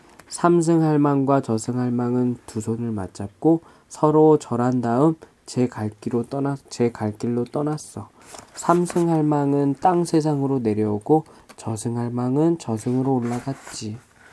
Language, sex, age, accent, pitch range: Korean, male, 20-39, native, 120-150 Hz